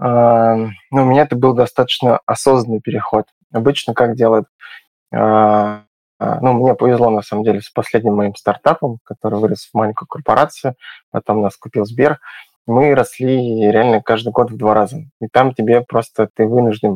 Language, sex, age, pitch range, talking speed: Russian, male, 20-39, 110-130 Hz, 170 wpm